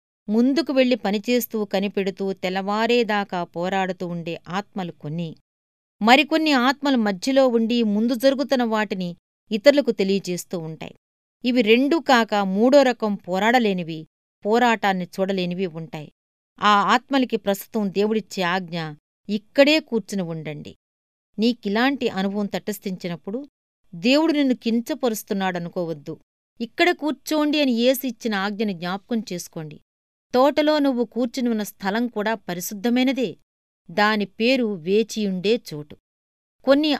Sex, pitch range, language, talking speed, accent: female, 190-250 Hz, Telugu, 95 wpm, native